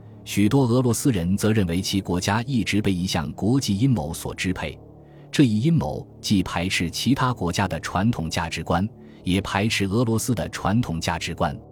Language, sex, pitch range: Chinese, male, 85-115 Hz